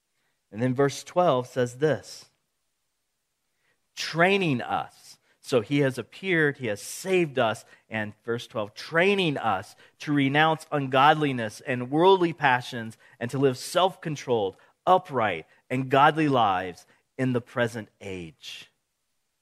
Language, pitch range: English, 135-180 Hz